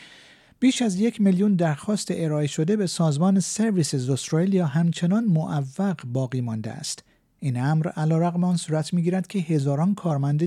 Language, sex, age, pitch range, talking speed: Persian, male, 50-69, 145-190 Hz, 145 wpm